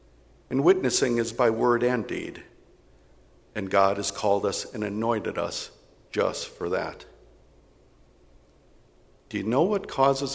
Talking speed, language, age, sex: 135 wpm, English, 60-79, male